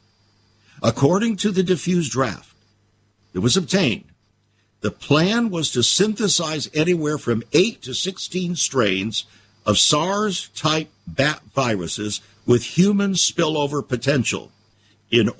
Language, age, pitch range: English, 60-79, 110-160 Hz